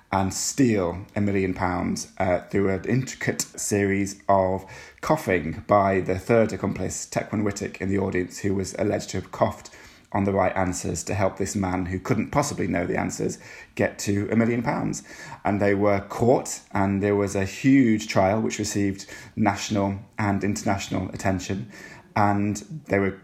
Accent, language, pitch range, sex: British, English, 95-110 Hz, male